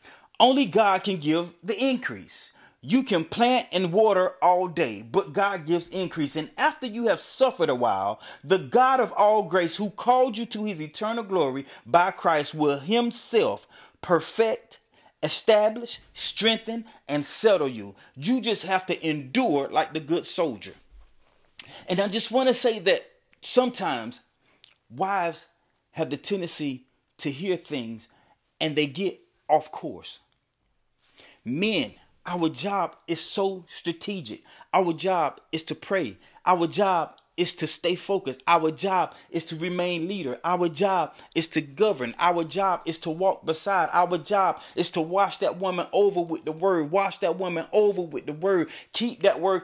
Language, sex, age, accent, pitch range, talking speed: English, male, 30-49, American, 160-210 Hz, 155 wpm